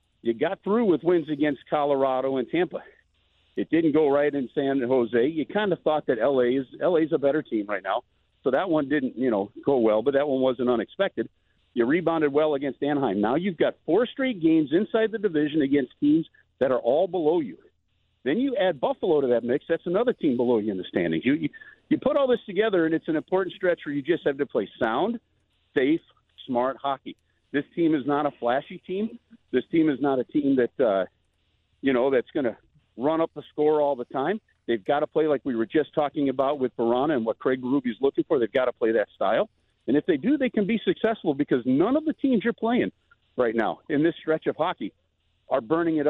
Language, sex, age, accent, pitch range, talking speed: English, male, 50-69, American, 130-210 Hz, 230 wpm